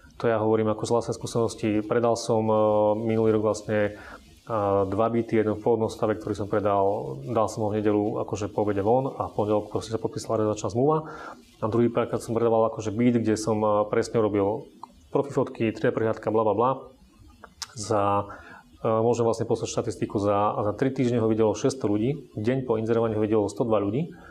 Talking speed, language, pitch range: 180 wpm, Slovak, 110-120 Hz